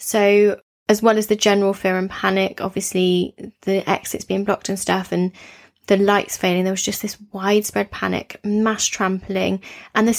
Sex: female